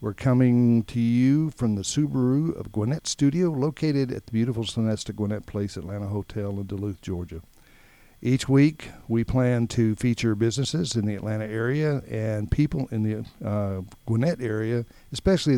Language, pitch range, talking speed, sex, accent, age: English, 110-130 Hz, 160 wpm, male, American, 60-79